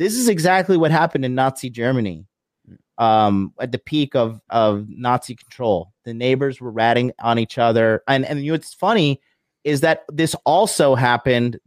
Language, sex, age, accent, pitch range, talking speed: English, male, 30-49, American, 120-150 Hz, 175 wpm